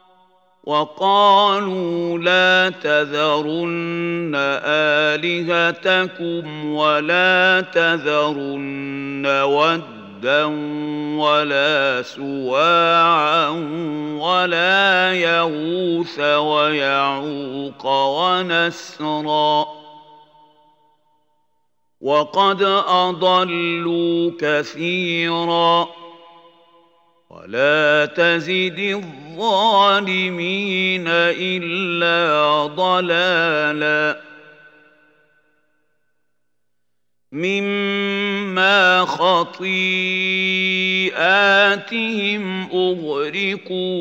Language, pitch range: Arabic, 150-185 Hz